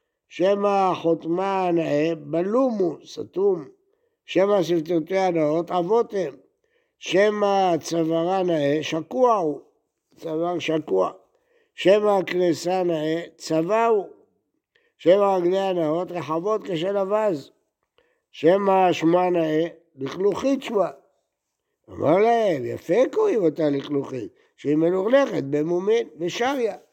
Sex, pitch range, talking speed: male, 155-235 Hz, 95 wpm